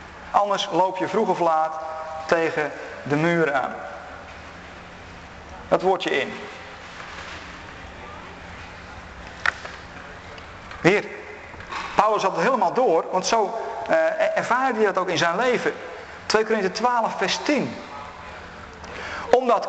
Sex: male